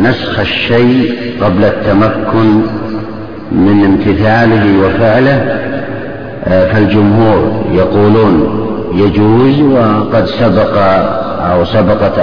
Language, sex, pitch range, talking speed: Arabic, male, 110-150 Hz, 70 wpm